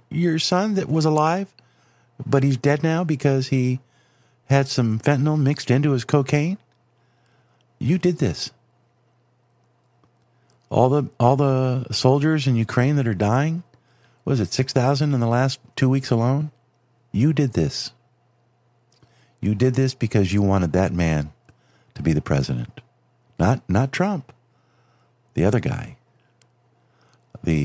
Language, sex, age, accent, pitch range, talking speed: English, male, 50-69, American, 100-130 Hz, 135 wpm